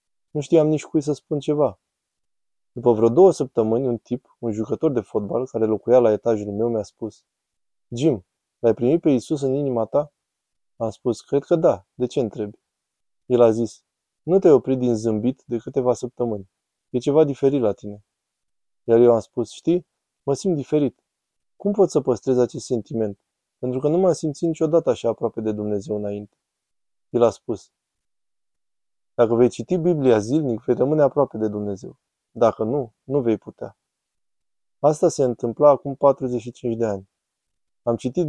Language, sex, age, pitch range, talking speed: Romanian, male, 20-39, 110-145 Hz, 170 wpm